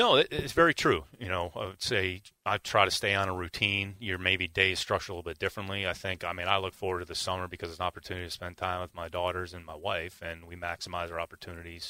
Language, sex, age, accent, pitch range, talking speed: English, male, 30-49, American, 90-100 Hz, 265 wpm